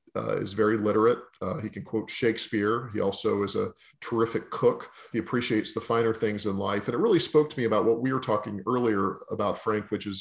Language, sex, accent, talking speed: English, male, American, 225 wpm